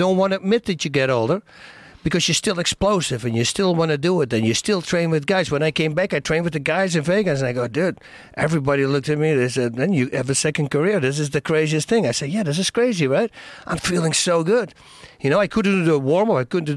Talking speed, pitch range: 275 wpm, 120-160 Hz